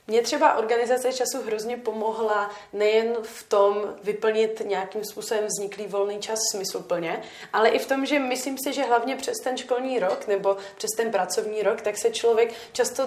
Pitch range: 210-250 Hz